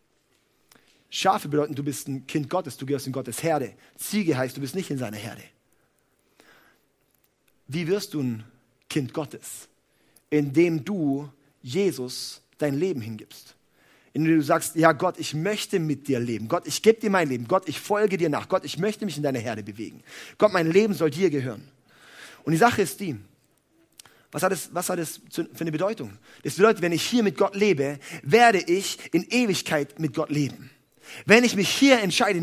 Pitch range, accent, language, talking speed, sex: 145-220 Hz, German, German, 185 wpm, male